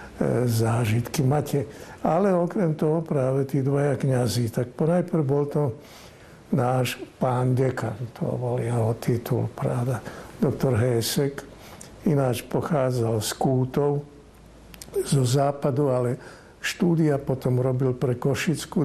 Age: 60-79